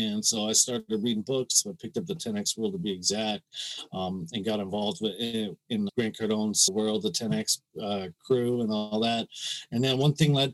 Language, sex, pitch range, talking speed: English, male, 115-130 Hz, 200 wpm